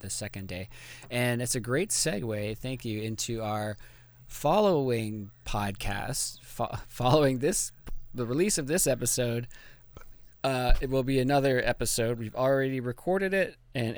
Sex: male